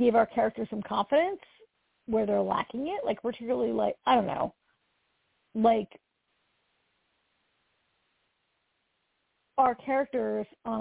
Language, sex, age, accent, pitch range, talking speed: English, female, 40-59, American, 205-260 Hz, 105 wpm